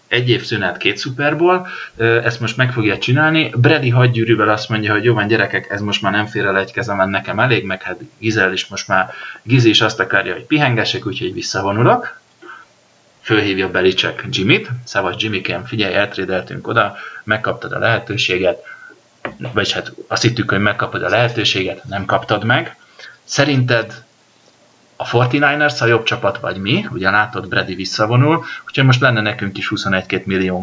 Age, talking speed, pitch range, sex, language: 30-49, 165 wpm, 100-130 Hz, male, Hungarian